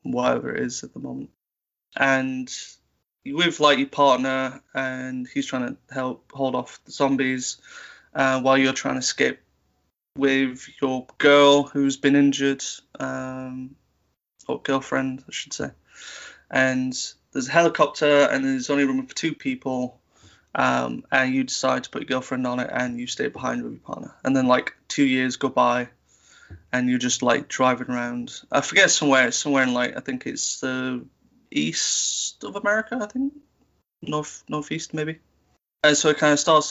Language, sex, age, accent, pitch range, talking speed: English, male, 20-39, British, 125-140 Hz, 170 wpm